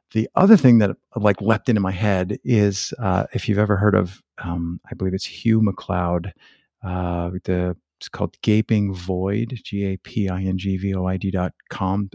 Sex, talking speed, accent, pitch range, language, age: male, 135 wpm, American, 95-120 Hz, English, 50-69